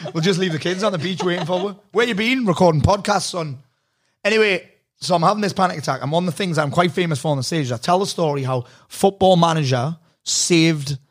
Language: English